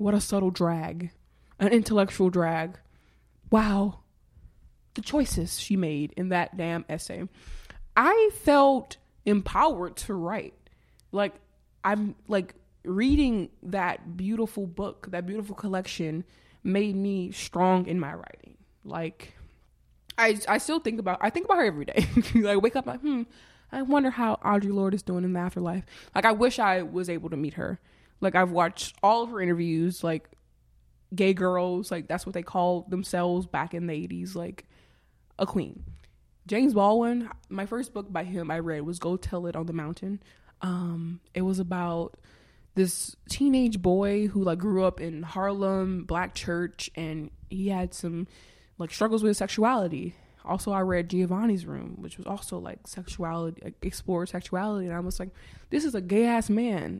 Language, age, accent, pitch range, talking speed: English, 20-39, American, 170-205 Hz, 165 wpm